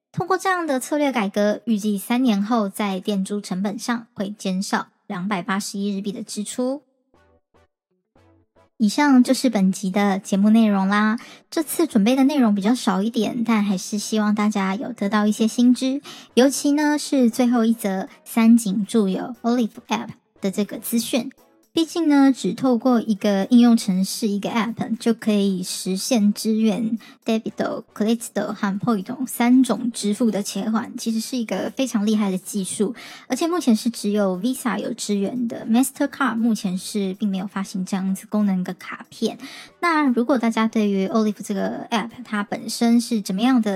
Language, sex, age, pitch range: Chinese, male, 20-39, 205-245 Hz